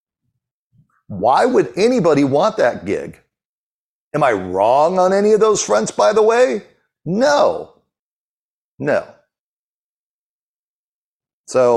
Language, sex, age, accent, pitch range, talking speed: English, male, 50-69, American, 125-185 Hz, 100 wpm